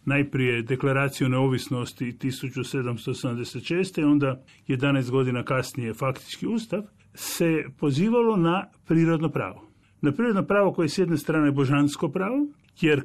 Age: 50-69